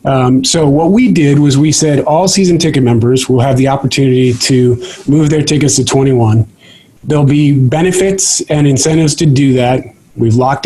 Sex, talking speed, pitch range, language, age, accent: male, 180 wpm, 130-155 Hz, English, 30-49, American